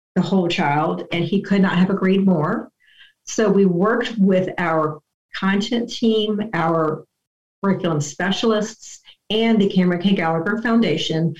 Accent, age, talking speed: American, 50-69, 135 wpm